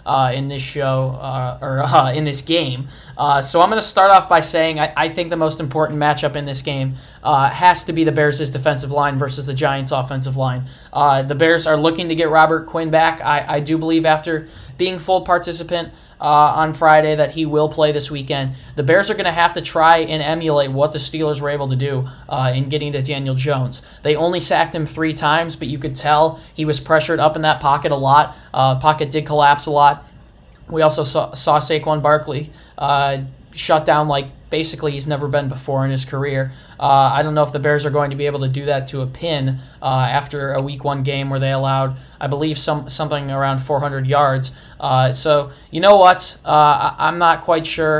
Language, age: English, 10-29